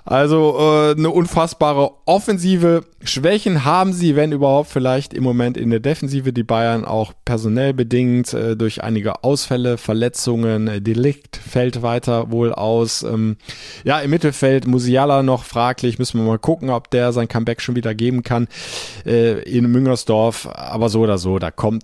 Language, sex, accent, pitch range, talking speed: German, male, German, 100-130 Hz, 160 wpm